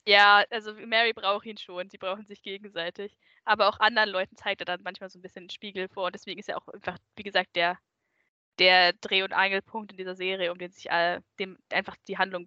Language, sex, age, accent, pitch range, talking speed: German, female, 10-29, German, 185-215 Hz, 230 wpm